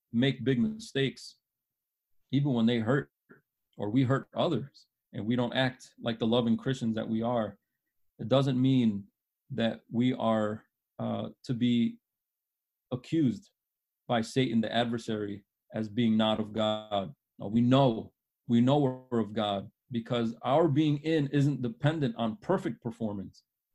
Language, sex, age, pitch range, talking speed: English, male, 30-49, 115-140 Hz, 145 wpm